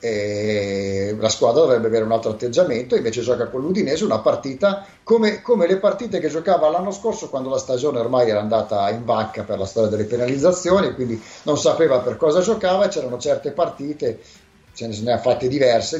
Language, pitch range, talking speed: Italian, 120-180 Hz, 190 wpm